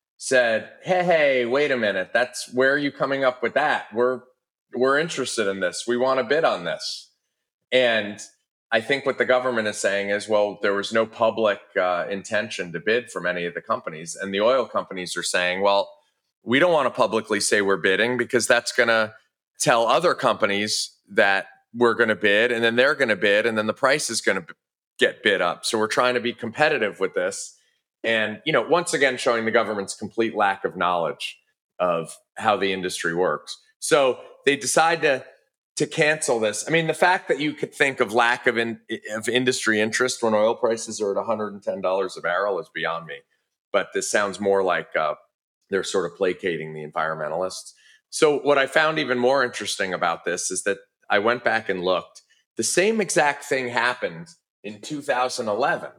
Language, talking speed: English, 200 wpm